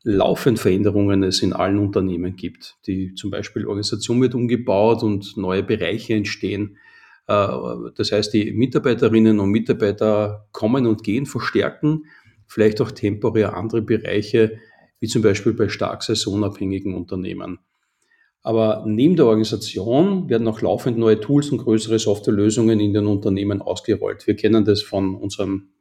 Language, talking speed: German, 140 wpm